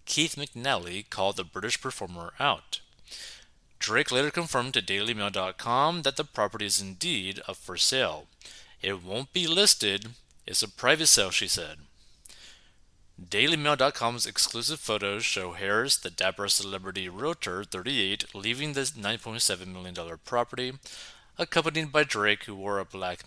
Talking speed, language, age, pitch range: 135 wpm, English, 30-49, 95-135 Hz